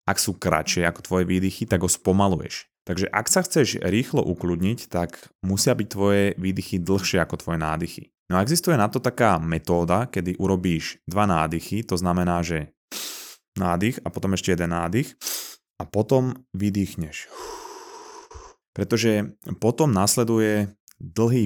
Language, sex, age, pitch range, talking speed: Slovak, male, 20-39, 85-110 Hz, 145 wpm